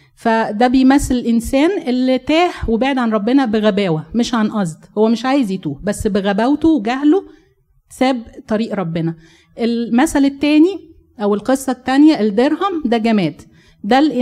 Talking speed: 130 wpm